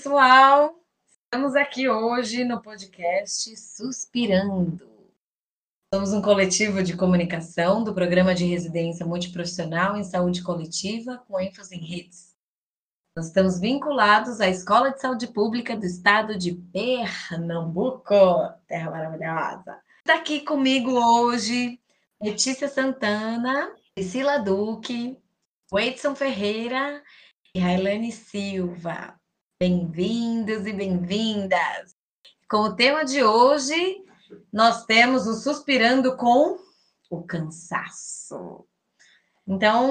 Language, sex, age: Portuguese, female, 20-39